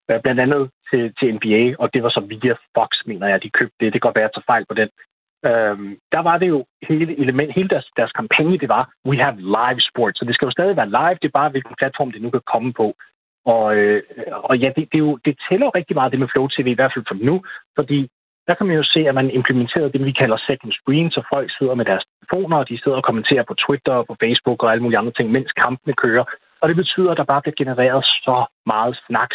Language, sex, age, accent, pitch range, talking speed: Danish, male, 30-49, native, 120-150 Hz, 260 wpm